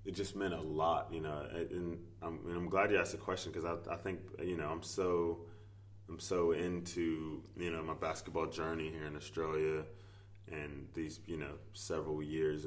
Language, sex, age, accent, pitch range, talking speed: English, male, 20-39, American, 80-100 Hz, 195 wpm